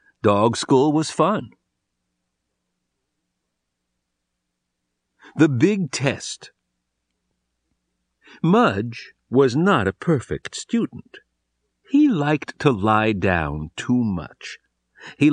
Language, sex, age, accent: Chinese, male, 60-79, American